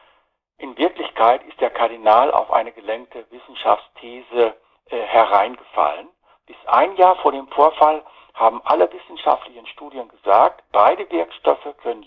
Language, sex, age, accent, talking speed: German, male, 60-79, German, 125 wpm